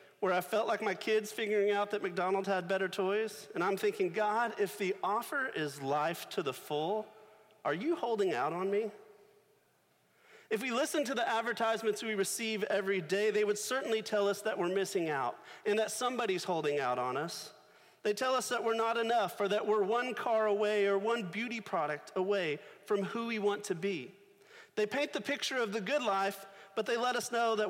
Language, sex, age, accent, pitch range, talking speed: English, male, 40-59, American, 190-230 Hz, 205 wpm